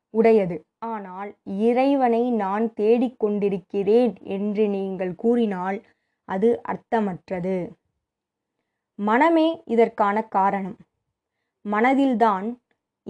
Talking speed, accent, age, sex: 65 wpm, native, 20-39, female